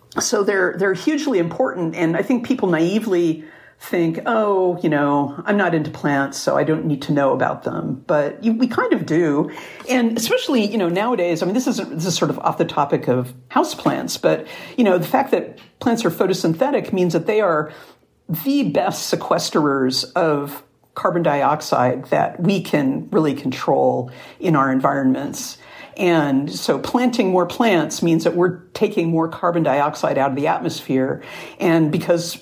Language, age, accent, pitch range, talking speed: English, 50-69, American, 145-185 Hz, 175 wpm